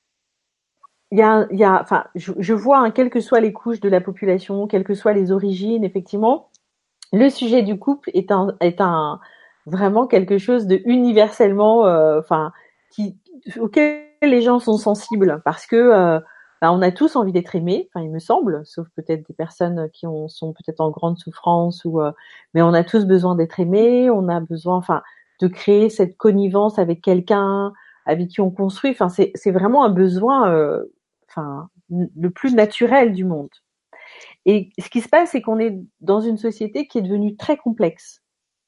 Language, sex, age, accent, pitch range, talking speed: French, female, 40-59, French, 180-235 Hz, 190 wpm